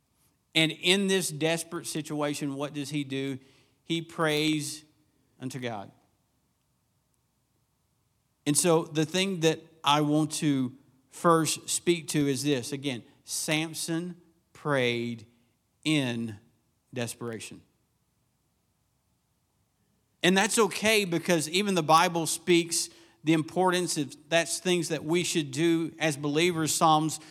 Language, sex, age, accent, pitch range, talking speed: English, male, 50-69, American, 140-165 Hz, 110 wpm